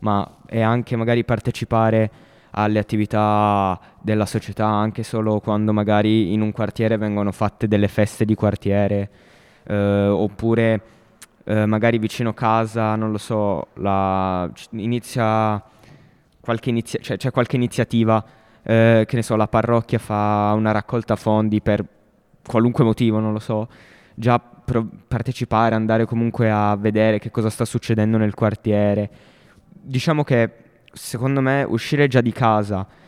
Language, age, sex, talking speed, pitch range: Italian, 20-39, male, 130 wpm, 105-120 Hz